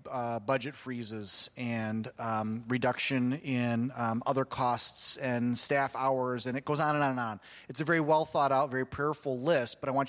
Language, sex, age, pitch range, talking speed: English, male, 30-49, 125-150 Hz, 195 wpm